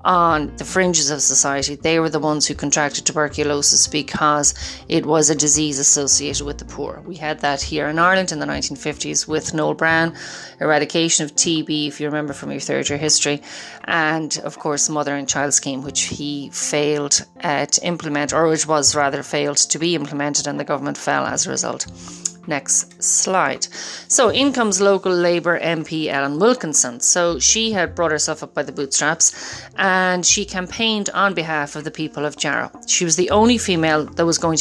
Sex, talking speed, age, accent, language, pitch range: female, 190 wpm, 30-49, Irish, English, 145-175 Hz